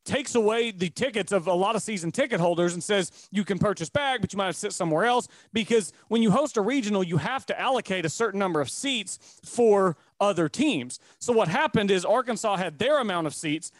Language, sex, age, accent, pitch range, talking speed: English, male, 30-49, American, 180-220 Hz, 220 wpm